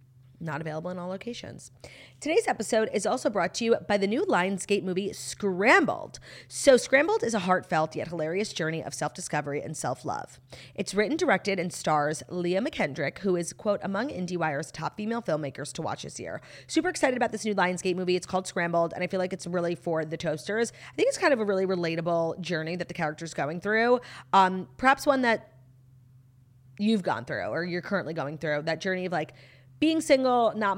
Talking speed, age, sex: 195 wpm, 30-49, female